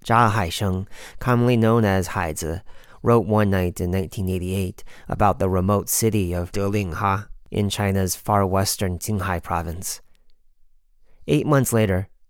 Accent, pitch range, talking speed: American, 90-105 Hz, 135 wpm